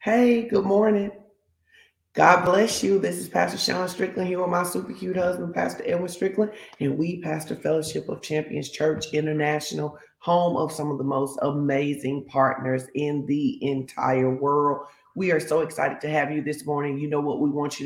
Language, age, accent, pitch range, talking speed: English, 40-59, American, 145-175 Hz, 185 wpm